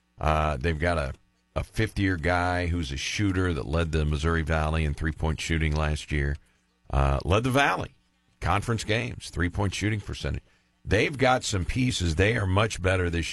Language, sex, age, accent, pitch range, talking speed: English, male, 50-69, American, 75-95 Hz, 170 wpm